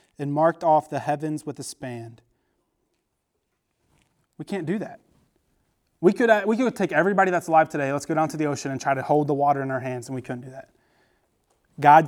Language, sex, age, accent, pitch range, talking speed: English, male, 30-49, American, 135-165 Hz, 210 wpm